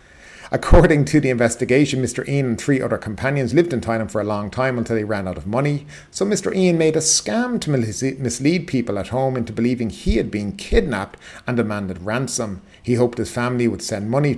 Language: English